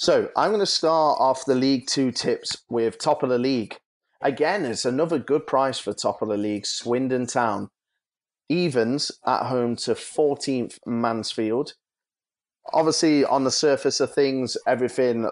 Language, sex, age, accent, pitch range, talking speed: English, male, 30-49, British, 110-135 Hz, 155 wpm